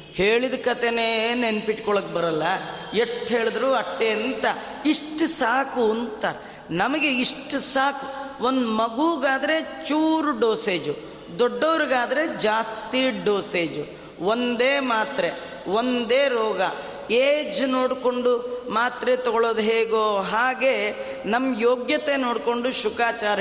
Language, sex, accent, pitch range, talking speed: Kannada, female, native, 205-255 Hz, 90 wpm